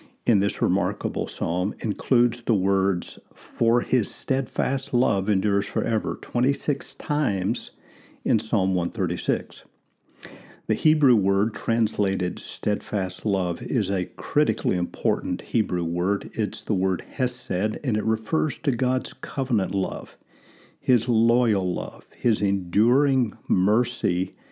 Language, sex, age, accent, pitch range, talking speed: English, male, 50-69, American, 95-120 Hz, 115 wpm